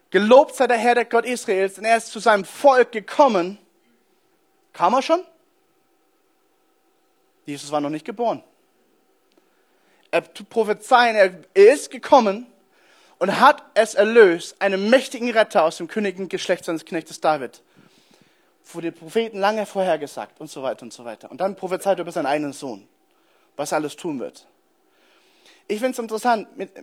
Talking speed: 155 wpm